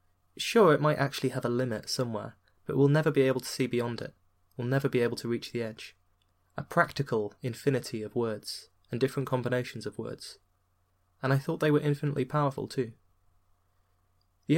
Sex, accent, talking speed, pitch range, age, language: male, British, 180 wpm, 100-135 Hz, 20-39, English